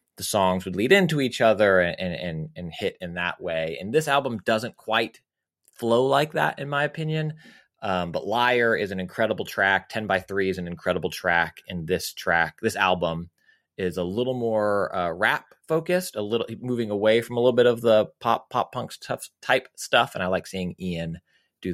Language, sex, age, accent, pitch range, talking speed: English, male, 30-49, American, 95-130 Hz, 200 wpm